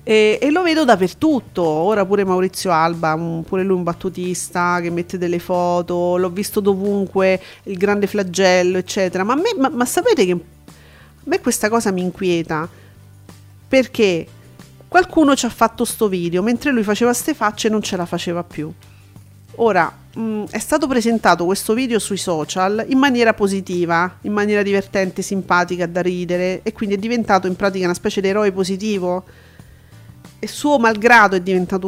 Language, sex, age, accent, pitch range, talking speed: Italian, female, 40-59, native, 180-230 Hz, 165 wpm